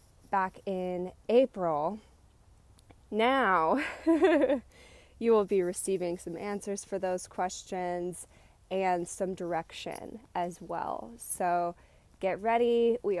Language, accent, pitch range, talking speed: English, American, 175-210 Hz, 100 wpm